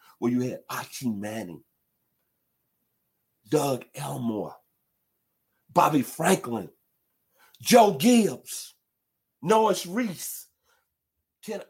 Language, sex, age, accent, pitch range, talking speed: English, male, 50-69, American, 120-180 Hz, 75 wpm